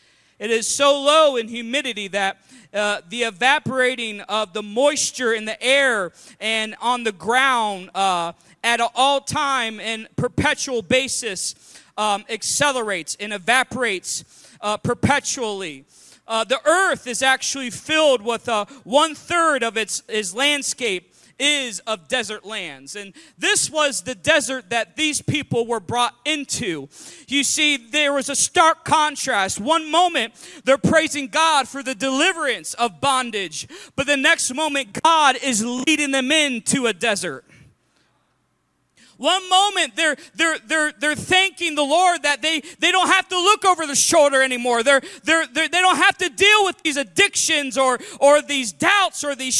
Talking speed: 150 wpm